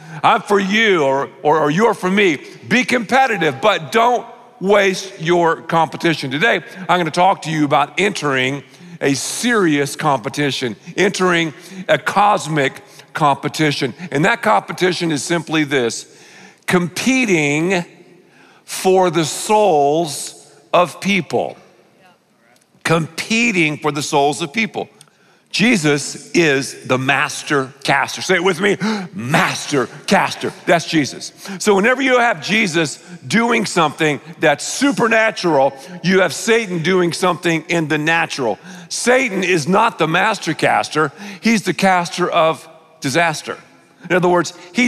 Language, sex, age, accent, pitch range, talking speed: English, male, 50-69, American, 150-195 Hz, 125 wpm